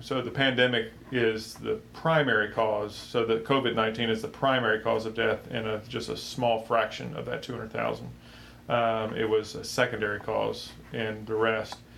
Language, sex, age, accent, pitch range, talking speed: English, male, 40-59, American, 110-120 Hz, 160 wpm